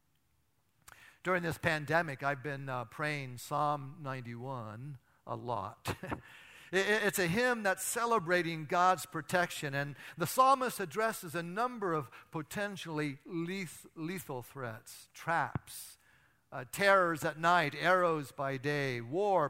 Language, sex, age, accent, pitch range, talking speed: English, male, 50-69, American, 155-210 Hz, 115 wpm